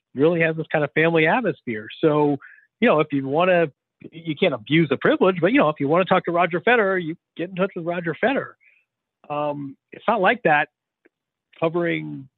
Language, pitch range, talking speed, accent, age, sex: English, 140-185 Hz, 210 wpm, American, 40-59, male